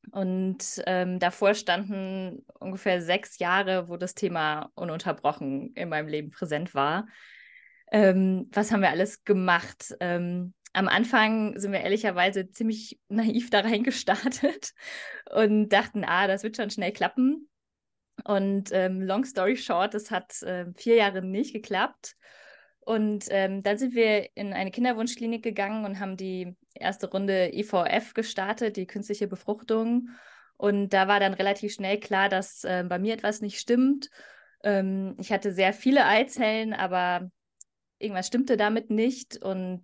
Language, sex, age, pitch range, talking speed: German, female, 20-39, 190-225 Hz, 145 wpm